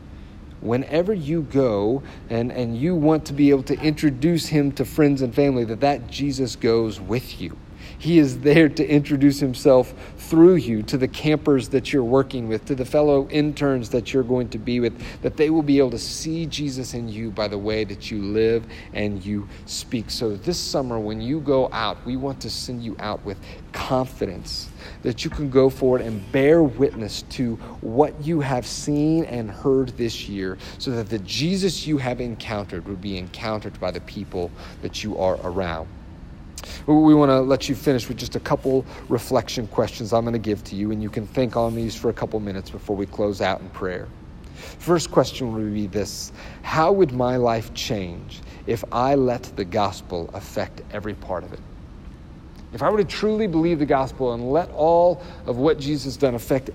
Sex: male